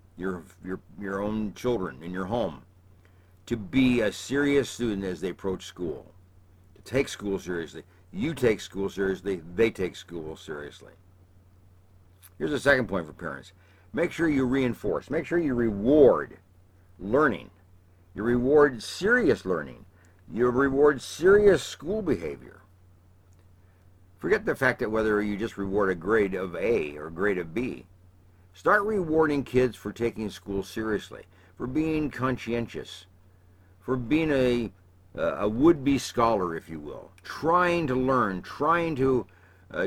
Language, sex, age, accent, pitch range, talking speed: English, male, 60-79, American, 90-125 Hz, 140 wpm